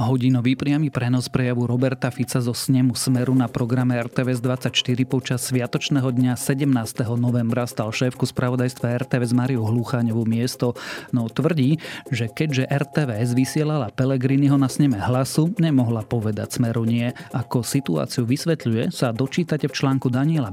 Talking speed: 135 wpm